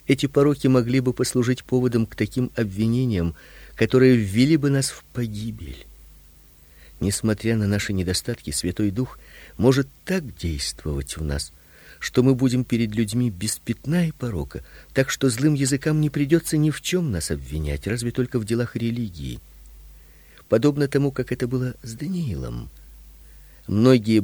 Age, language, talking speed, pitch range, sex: 50-69, Russian, 140 wpm, 75-125 Hz, male